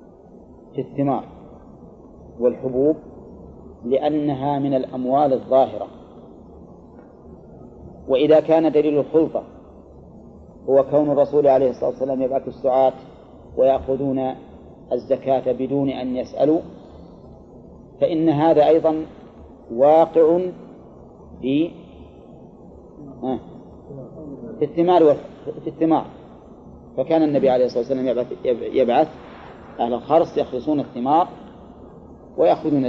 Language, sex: Arabic, male